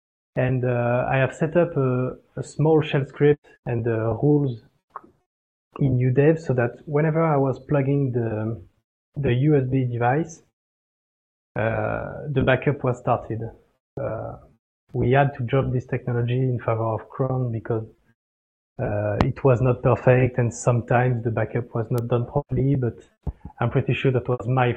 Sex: male